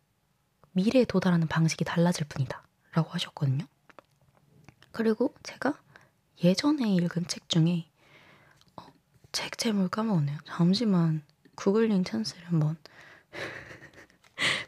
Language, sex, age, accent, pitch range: Korean, female, 20-39, native, 160-205 Hz